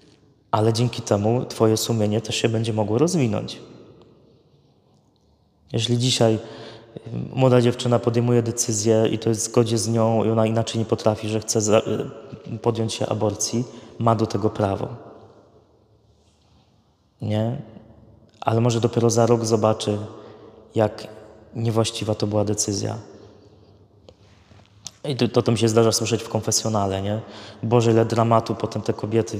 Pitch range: 105-120 Hz